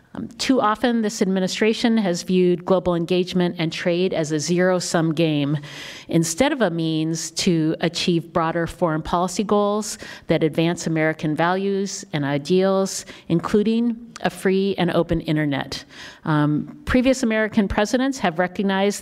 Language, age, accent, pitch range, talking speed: English, 50-69, American, 165-205 Hz, 135 wpm